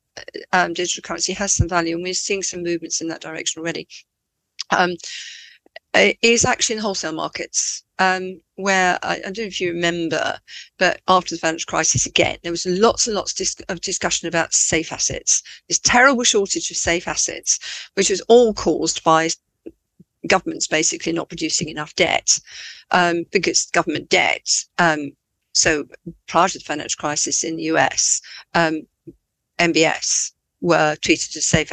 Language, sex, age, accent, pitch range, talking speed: English, female, 50-69, British, 160-185 Hz, 160 wpm